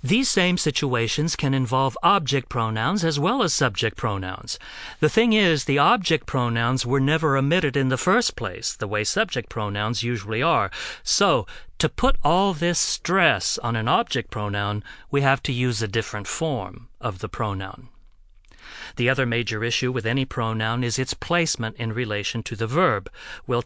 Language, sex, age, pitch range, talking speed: Italian, male, 40-59, 110-150 Hz, 170 wpm